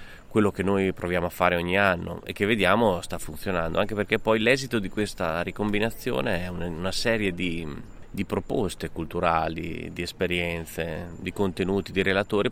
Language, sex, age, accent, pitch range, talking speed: Italian, male, 30-49, native, 85-100 Hz, 160 wpm